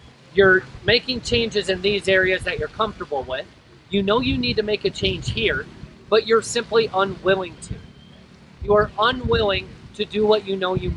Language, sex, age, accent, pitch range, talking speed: English, male, 30-49, American, 180-215 Hz, 180 wpm